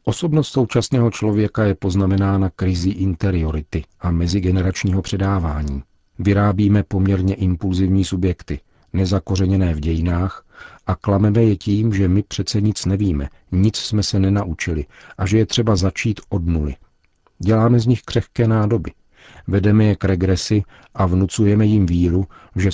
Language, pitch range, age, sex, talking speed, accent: Czech, 85-100 Hz, 50-69, male, 135 wpm, native